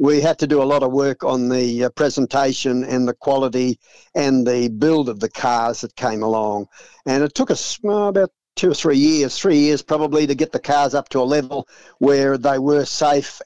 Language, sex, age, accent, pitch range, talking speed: English, male, 50-69, Australian, 120-150 Hz, 210 wpm